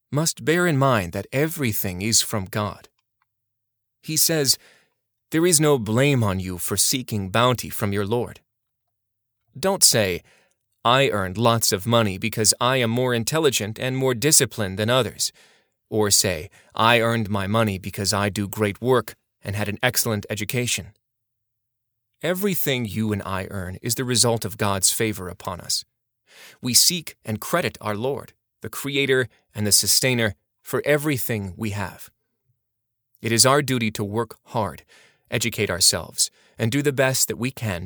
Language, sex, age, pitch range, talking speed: English, male, 30-49, 105-130 Hz, 160 wpm